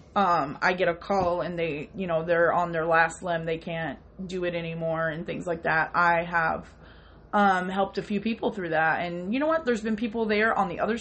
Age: 20-39